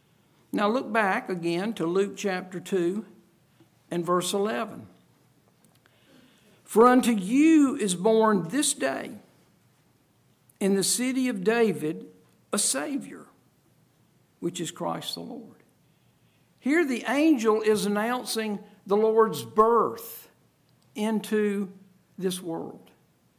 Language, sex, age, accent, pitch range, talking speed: English, male, 60-79, American, 190-240 Hz, 105 wpm